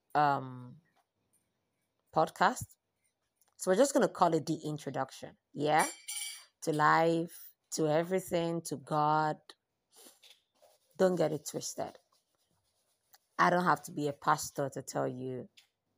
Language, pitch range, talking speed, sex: English, 135-165 Hz, 120 wpm, female